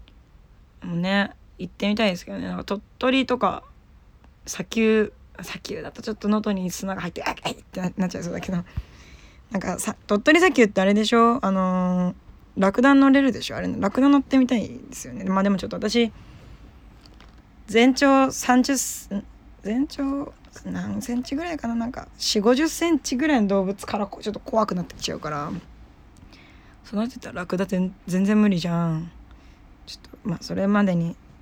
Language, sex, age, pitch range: Japanese, female, 20-39, 175-230 Hz